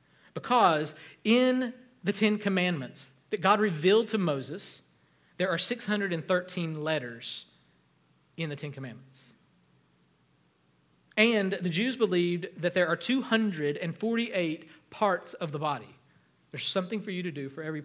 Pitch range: 160-215 Hz